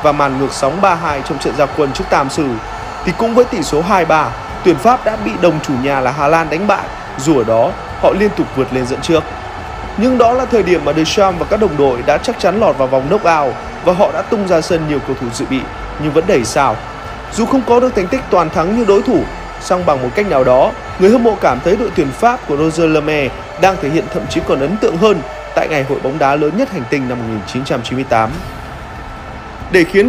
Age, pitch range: 20-39, 145-215 Hz